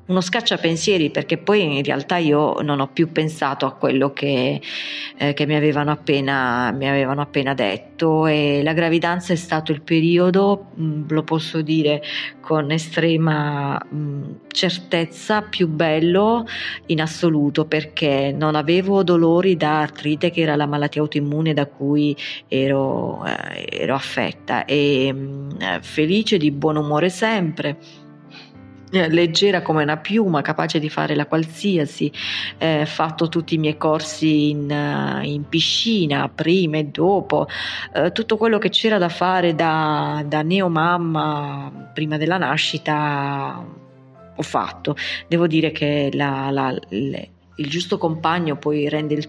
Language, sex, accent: Italian, female, native